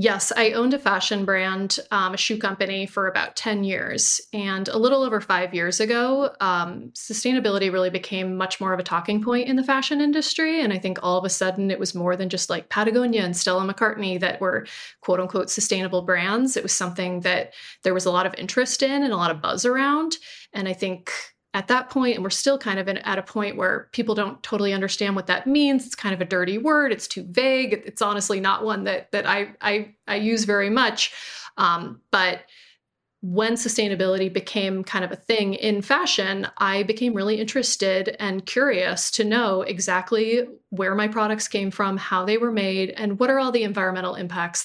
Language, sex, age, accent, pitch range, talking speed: English, female, 30-49, American, 190-240 Hz, 210 wpm